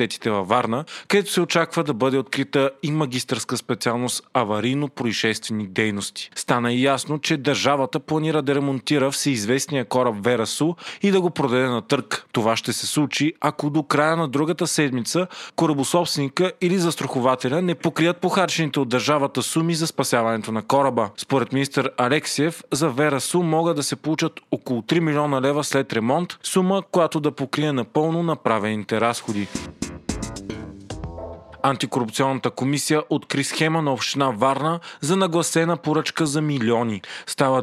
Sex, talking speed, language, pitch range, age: male, 140 wpm, Bulgarian, 125-160 Hz, 30-49